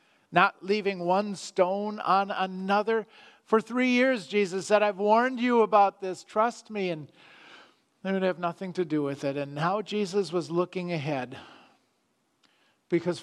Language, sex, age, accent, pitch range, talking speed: English, male, 50-69, American, 150-200 Hz, 155 wpm